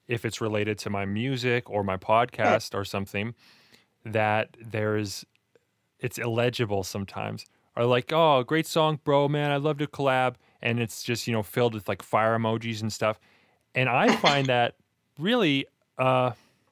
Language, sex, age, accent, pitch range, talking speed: English, male, 30-49, American, 110-140 Hz, 170 wpm